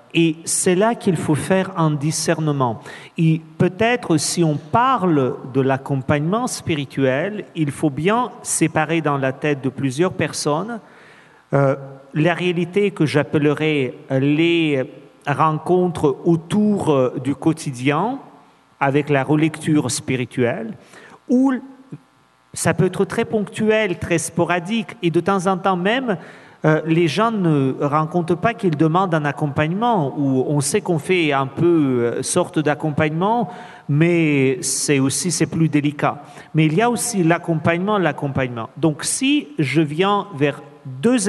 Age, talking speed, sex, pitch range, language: 50-69, 135 wpm, male, 145-190 Hz, French